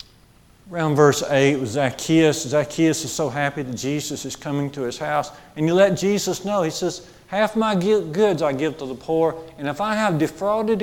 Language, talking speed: English, 205 wpm